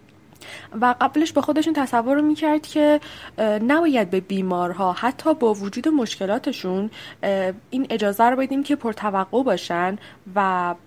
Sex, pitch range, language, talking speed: female, 195-290 Hz, Persian, 125 wpm